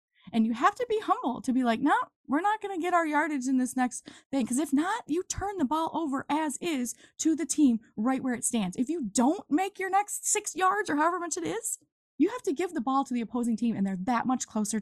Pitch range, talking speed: 215-275 Hz, 265 wpm